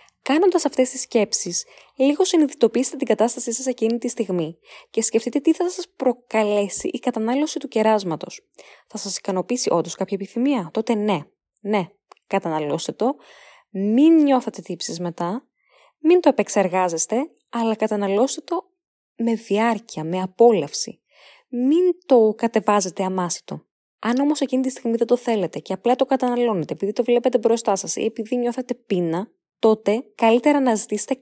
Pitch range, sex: 195-280 Hz, female